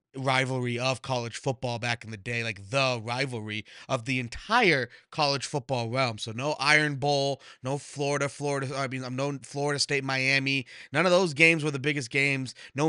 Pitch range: 125-150 Hz